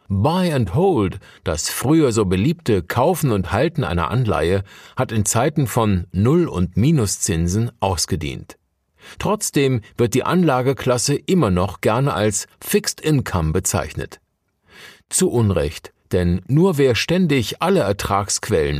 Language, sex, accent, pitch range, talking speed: German, male, German, 95-140 Hz, 125 wpm